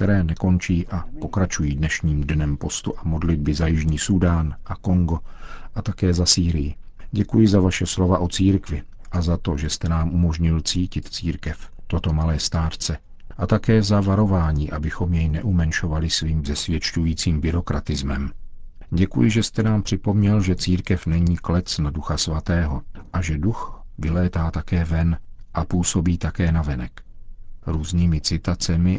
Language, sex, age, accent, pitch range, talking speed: Czech, male, 50-69, native, 80-95 Hz, 145 wpm